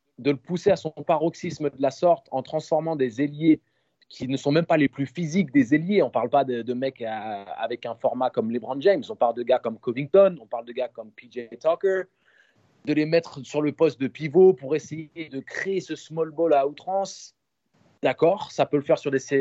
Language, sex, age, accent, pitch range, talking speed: French, male, 30-49, French, 135-165 Hz, 230 wpm